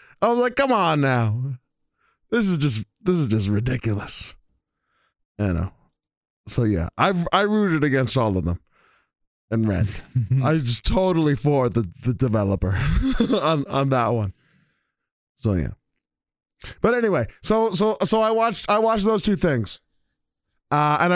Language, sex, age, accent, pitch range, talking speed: English, male, 20-39, American, 120-175 Hz, 155 wpm